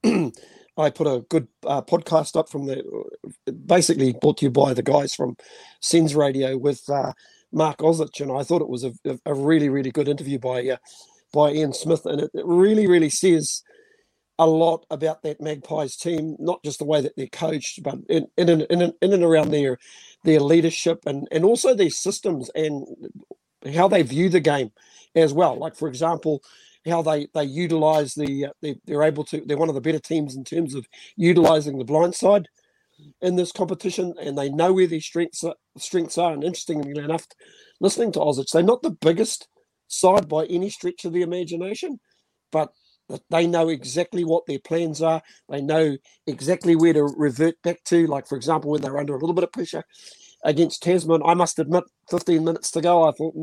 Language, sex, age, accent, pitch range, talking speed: English, male, 50-69, Australian, 150-175 Hz, 200 wpm